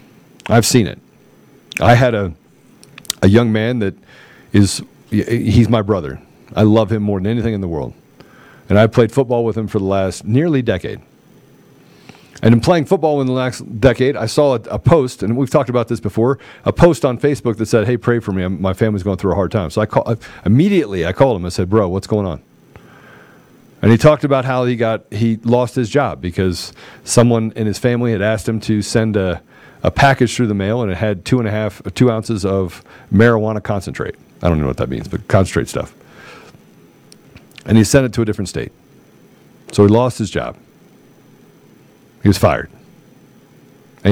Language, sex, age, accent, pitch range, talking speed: English, male, 40-59, American, 105-125 Hz, 205 wpm